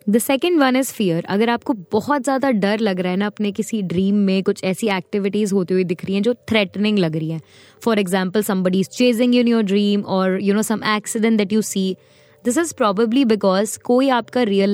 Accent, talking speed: native, 210 wpm